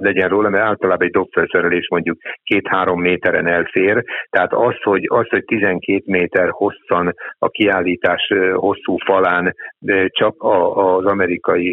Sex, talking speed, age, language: male, 130 wpm, 60-79, Hungarian